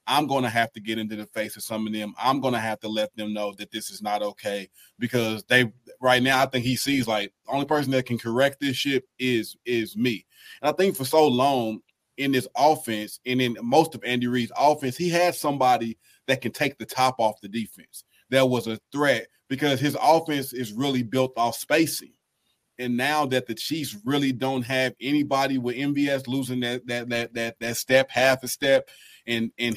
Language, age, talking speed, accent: English, 30-49, 220 wpm, American